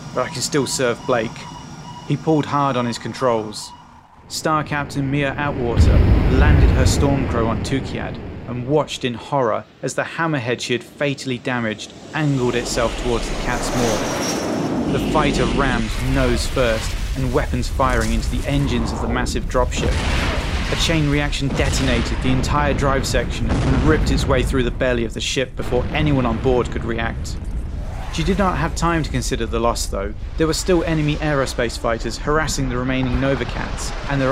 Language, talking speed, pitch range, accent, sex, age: English, 175 wpm, 115-140 Hz, British, male, 30-49